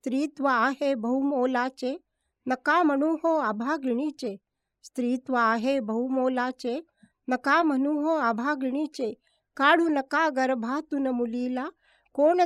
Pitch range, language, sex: 240-285 Hz, Marathi, female